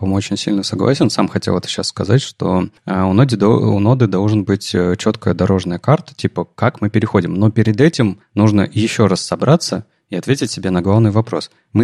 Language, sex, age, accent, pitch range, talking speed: Russian, male, 30-49, native, 105-135 Hz, 175 wpm